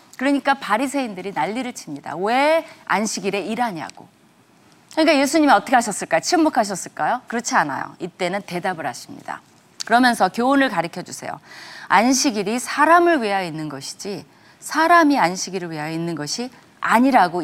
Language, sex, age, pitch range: Korean, female, 30-49, 175-270 Hz